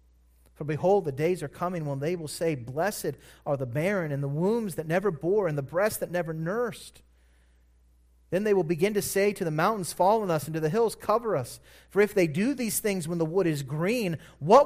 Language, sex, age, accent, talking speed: English, male, 30-49, American, 230 wpm